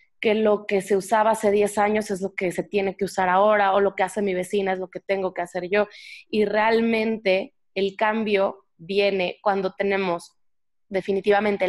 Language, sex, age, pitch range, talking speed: Spanish, female, 20-39, 185-210 Hz, 190 wpm